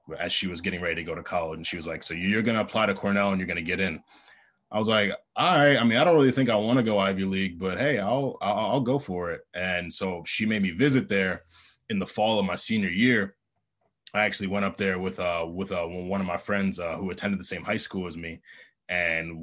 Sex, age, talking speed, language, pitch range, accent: male, 20-39, 270 wpm, English, 90-110 Hz, American